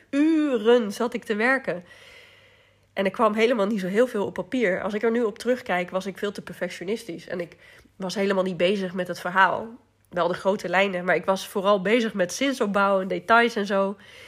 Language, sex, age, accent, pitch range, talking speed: Dutch, female, 30-49, Dutch, 195-255 Hz, 210 wpm